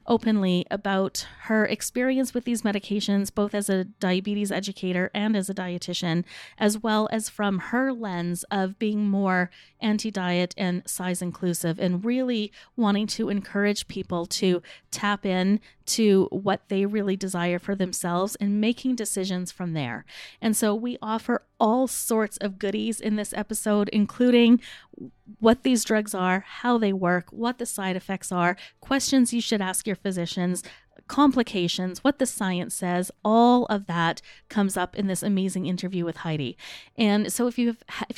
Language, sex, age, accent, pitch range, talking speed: English, female, 30-49, American, 190-225 Hz, 155 wpm